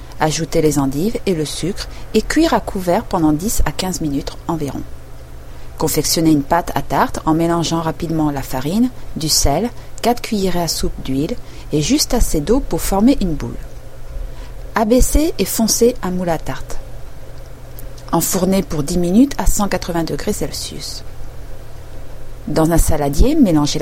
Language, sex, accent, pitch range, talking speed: French, female, French, 145-220 Hz, 150 wpm